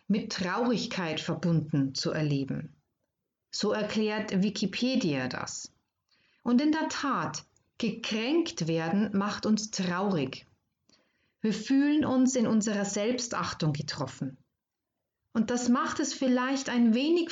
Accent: German